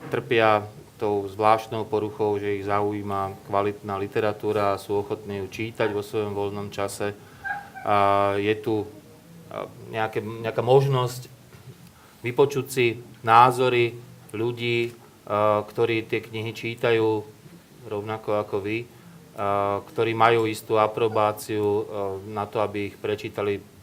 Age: 30-49